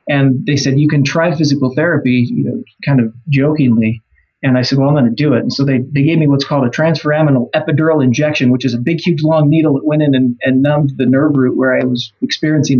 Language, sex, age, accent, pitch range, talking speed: English, male, 30-49, American, 130-155 Hz, 255 wpm